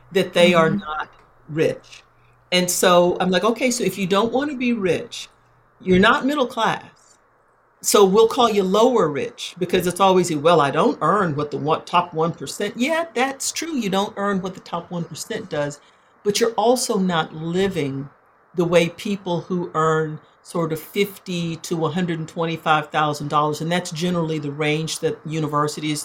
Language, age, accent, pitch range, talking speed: English, 50-69, American, 150-185 Hz, 165 wpm